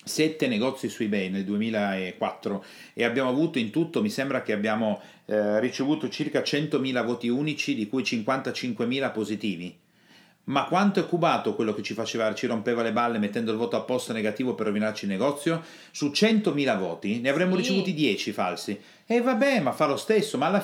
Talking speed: 185 wpm